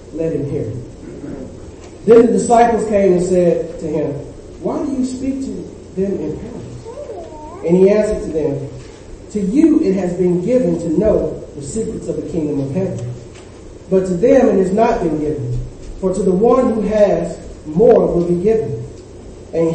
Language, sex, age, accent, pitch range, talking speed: English, male, 40-59, American, 150-205 Hz, 175 wpm